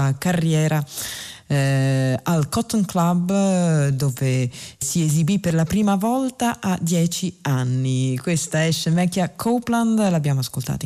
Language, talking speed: Italian, 115 wpm